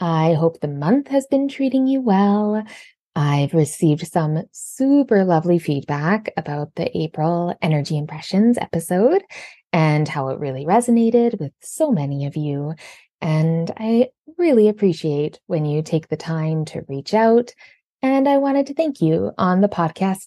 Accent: American